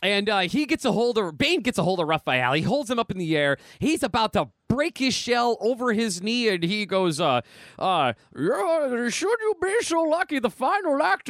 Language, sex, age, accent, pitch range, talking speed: English, male, 30-49, American, 185-285 Hz, 230 wpm